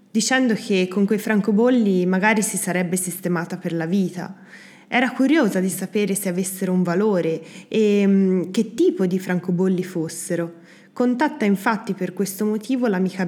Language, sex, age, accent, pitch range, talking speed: Italian, female, 20-39, native, 170-220 Hz, 145 wpm